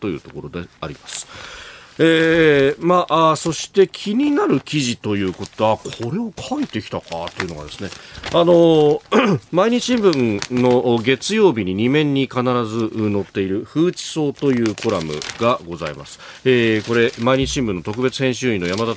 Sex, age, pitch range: male, 40-59, 95-130 Hz